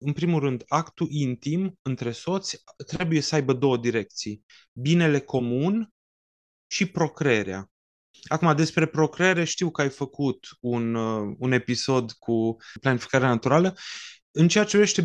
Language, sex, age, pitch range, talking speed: Romanian, male, 20-39, 135-175 Hz, 130 wpm